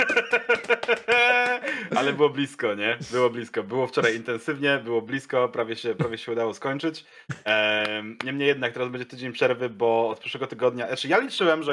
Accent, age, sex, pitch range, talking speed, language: native, 20-39, male, 115-150 Hz, 165 wpm, Polish